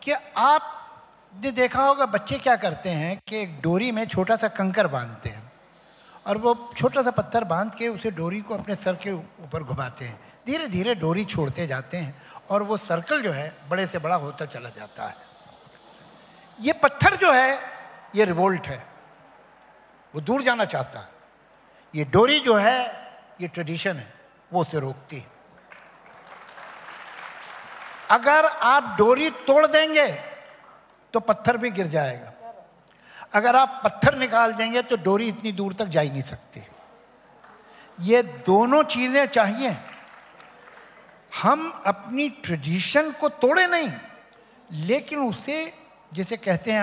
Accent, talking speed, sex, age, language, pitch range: native, 145 wpm, male, 60-79, Hindi, 170-255 Hz